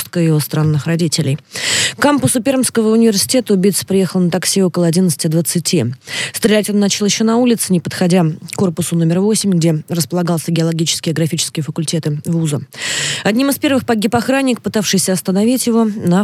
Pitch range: 155-200 Hz